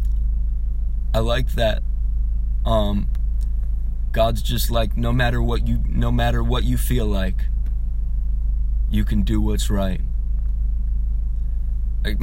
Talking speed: 115 wpm